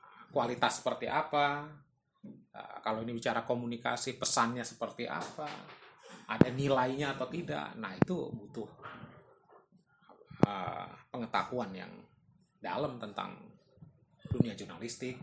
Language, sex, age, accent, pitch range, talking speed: Indonesian, male, 30-49, native, 120-175 Hz, 100 wpm